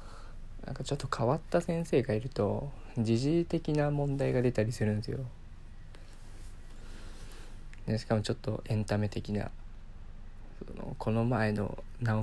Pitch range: 100-125 Hz